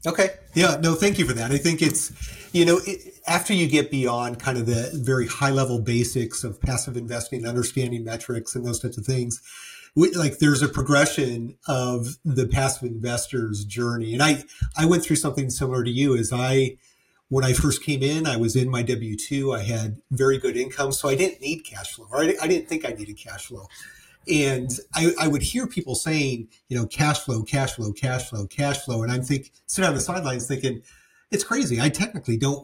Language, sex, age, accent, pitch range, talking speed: English, male, 40-59, American, 120-155 Hz, 205 wpm